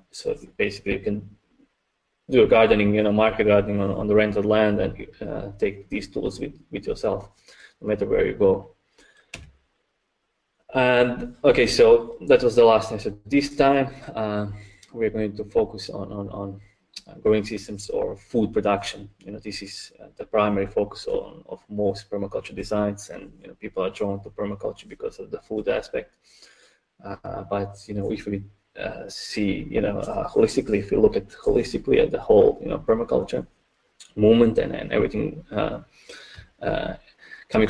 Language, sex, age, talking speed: English, male, 20-39, 170 wpm